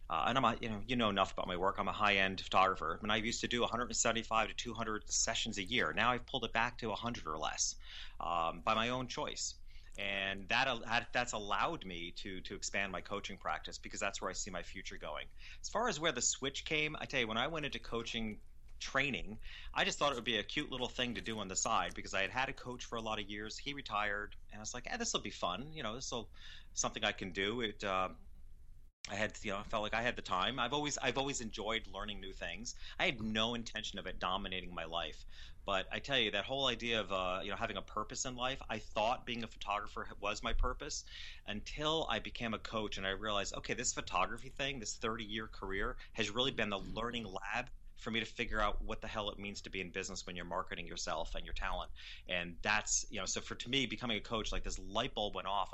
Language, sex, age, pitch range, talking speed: English, male, 30-49, 95-115 Hz, 255 wpm